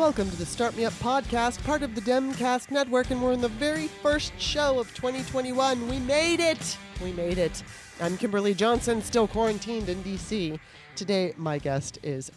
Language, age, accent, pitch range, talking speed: English, 30-49, American, 170-240 Hz, 185 wpm